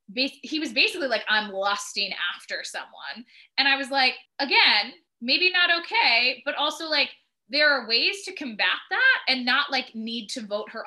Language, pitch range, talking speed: English, 195-255 Hz, 175 wpm